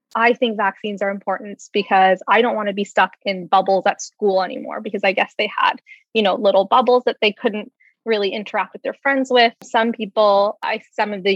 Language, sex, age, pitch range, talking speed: English, female, 20-39, 195-245 Hz, 210 wpm